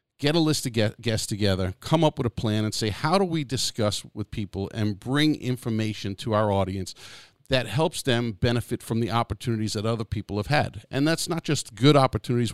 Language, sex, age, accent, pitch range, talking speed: English, male, 50-69, American, 105-125 Hz, 205 wpm